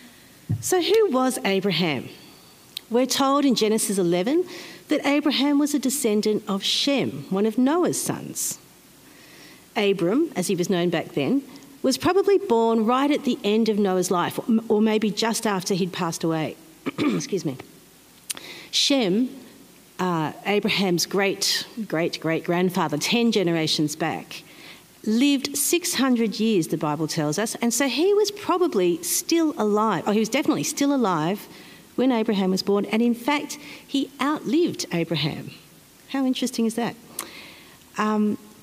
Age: 50-69